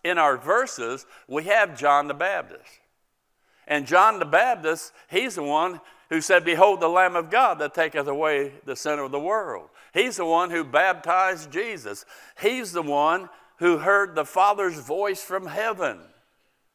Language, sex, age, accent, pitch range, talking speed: English, male, 50-69, American, 155-205 Hz, 165 wpm